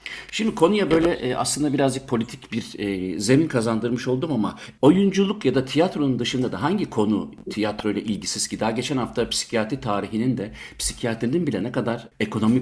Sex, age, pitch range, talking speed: male, 60-79, 110-155 Hz, 160 wpm